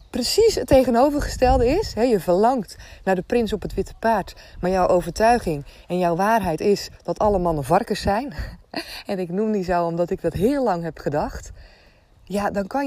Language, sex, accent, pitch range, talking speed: Dutch, female, Dutch, 145-200 Hz, 185 wpm